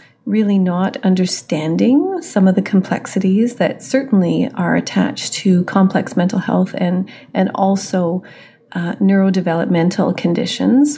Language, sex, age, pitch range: English, female, 40-59, 175-205 Hz